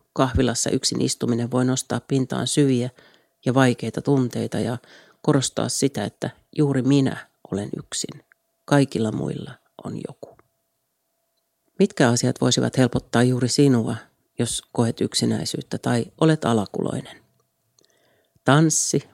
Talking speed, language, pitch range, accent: 110 wpm, Finnish, 120-140 Hz, native